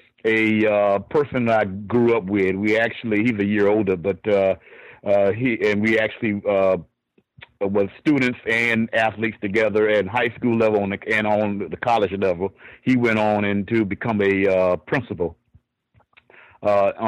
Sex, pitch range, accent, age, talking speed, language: male, 100-120 Hz, American, 50-69, 165 wpm, English